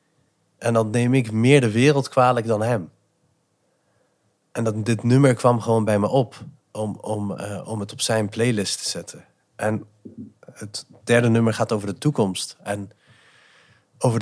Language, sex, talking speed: Dutch, male, 155 wpm